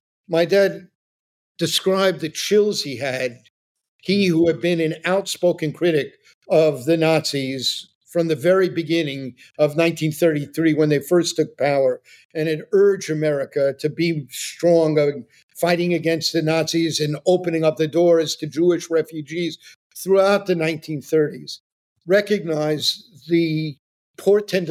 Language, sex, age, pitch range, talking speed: English, male, 50-69, 135-165 Hz, 130 wpm